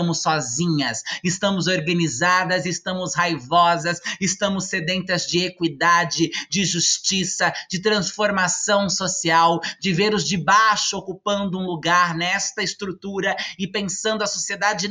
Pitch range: 175-220 Hz